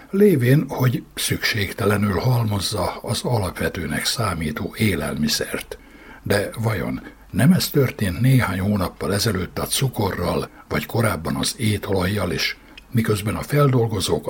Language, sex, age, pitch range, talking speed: Hungarian, male, 60-79, 100-130 Hz, 110 wpm